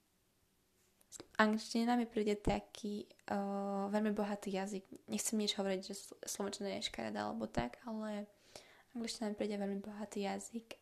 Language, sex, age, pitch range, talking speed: Slovak, female, 20-39, 195-220 Hz, 130 wpm